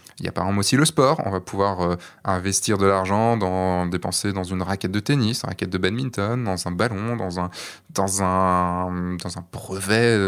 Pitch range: 95-120 Hz